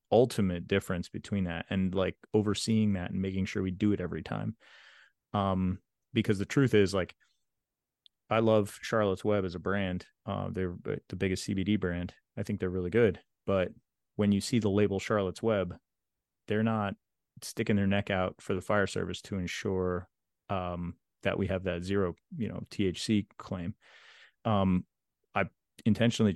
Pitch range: 90-105 Hz